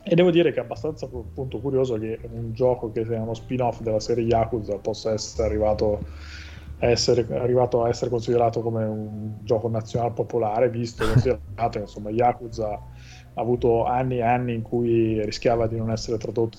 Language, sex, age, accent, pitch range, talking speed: Italian, male, 20-39, native, 105-120 Hz, 175 wpm